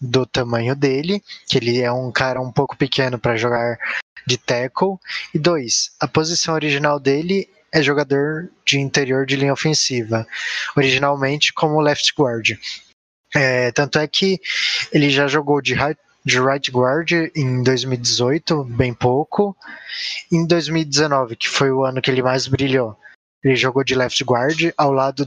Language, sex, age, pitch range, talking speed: Portuguese, male, 20-39, 130-155 Hz, 150 wpm